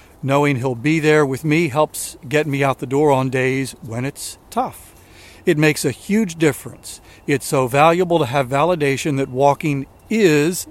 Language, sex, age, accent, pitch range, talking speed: English, male, 50-69, American, 125-155 Hz, 175 wpm